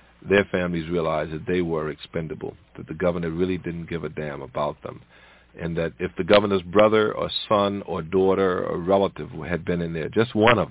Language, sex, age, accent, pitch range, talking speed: English, male, 50-69, American, 85-100 Hz, 200 wpm